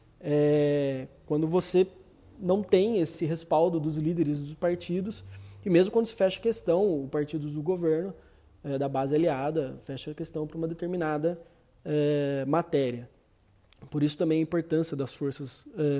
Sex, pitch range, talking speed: male, 150-185 Hz, 160 wpm